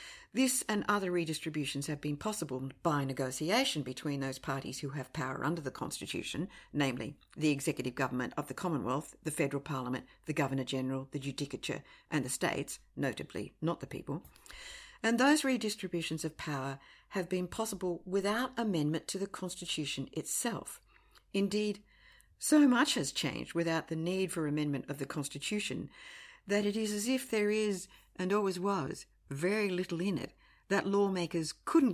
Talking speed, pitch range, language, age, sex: 155 wpm, 145-210 Hz, English, 50-69, female